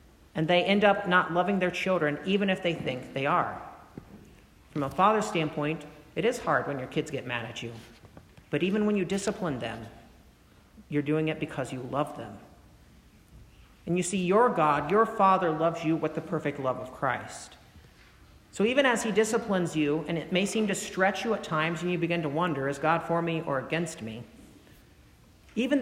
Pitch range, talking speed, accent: 150-205 Hz, 195 wpm, American